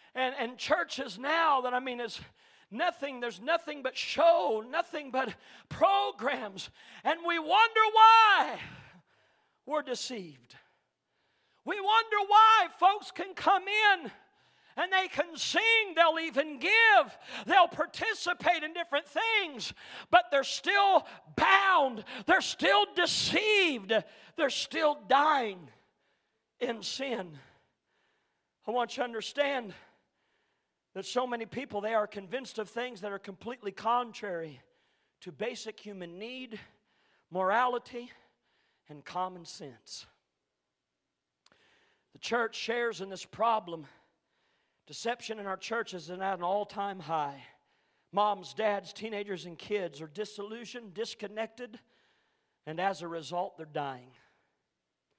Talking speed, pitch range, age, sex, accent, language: 115 wpm, 200-325 Hz, 40-59, male, American, English